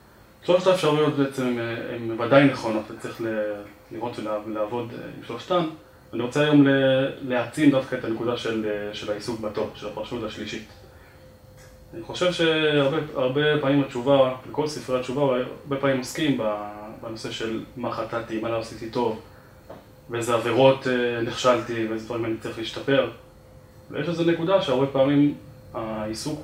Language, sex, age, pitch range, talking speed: Hebrew, male, 20-39, 115-145 Hz, 130 wpm